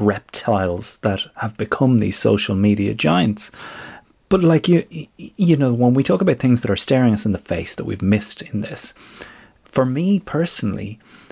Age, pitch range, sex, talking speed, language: 30-49, 110-155 Hz, male, 175 wpm, English